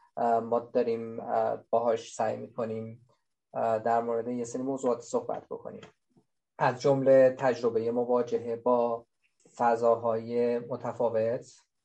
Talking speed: 100 wpm